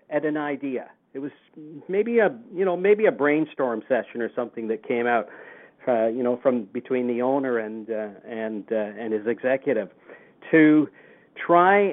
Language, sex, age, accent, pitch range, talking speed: English, male, 50-69, American, 125-155 Hz, 170 wpm